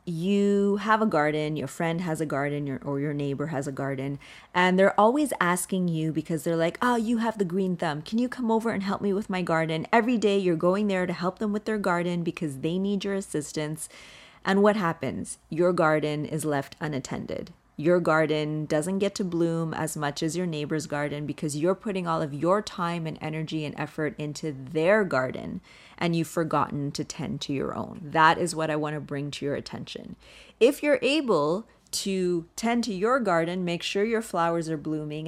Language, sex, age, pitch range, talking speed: English, female, 30-49, 155-200 Hz, 205 wpm